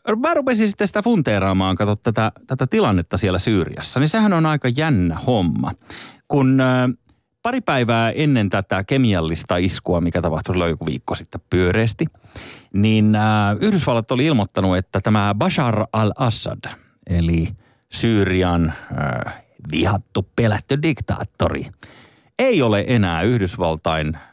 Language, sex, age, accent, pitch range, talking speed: Finnish, male, 30-49, native, 100-140 Hz, 125 wpm